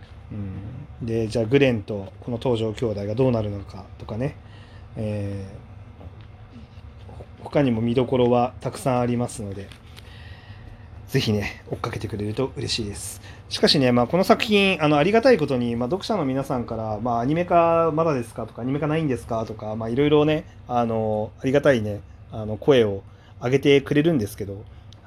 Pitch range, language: 105-135 Hz, Japanese